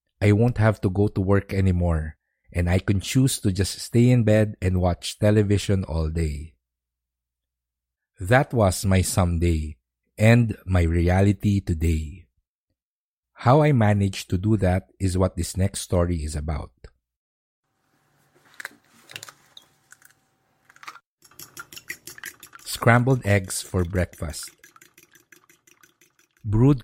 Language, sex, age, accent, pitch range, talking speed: English, male, 50-69, Filipino, 85-110 Hz, 105 wpm